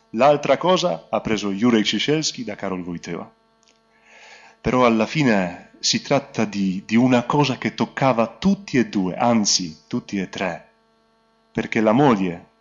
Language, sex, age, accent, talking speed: Italian, male, 30-49, native, 145 wpm